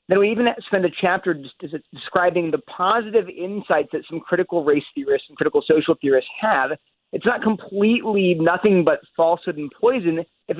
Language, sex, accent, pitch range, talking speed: English, male, American, 150-200 Hz, 170 wpm